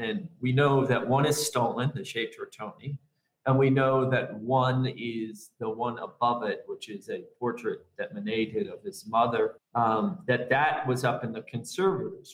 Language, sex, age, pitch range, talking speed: English, male, 40-59, 125-160 Hz, 185 wpm